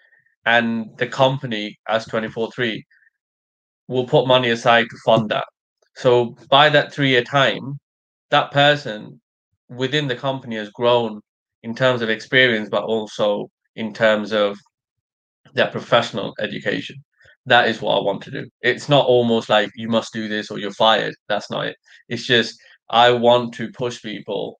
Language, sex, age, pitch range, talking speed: English, male, 20-39, 110-130 Hz, 155 wpm